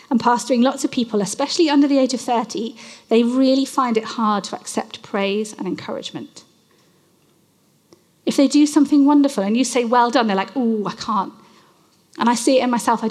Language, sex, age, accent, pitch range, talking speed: English, female, 40-59, British, 220-280 Hz, 195 wpm